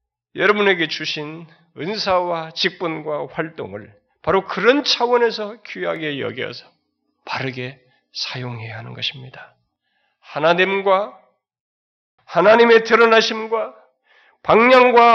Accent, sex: native, male